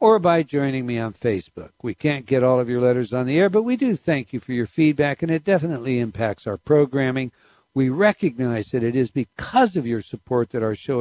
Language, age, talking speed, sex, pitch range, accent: English, 60-79, 230 wpm, male, 125-205 Hz, American